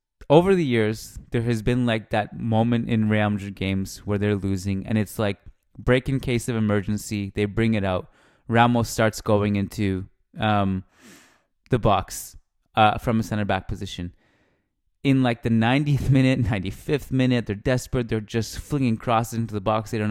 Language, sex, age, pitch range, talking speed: English, male, 20-39, 105-125 Hz, 175 wpm